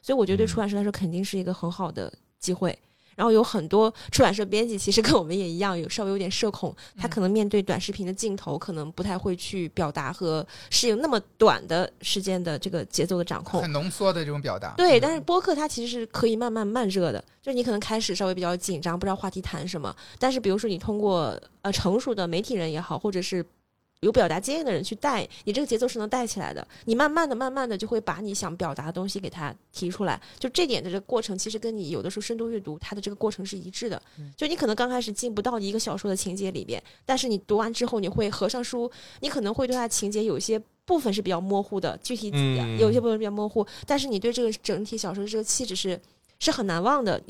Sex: female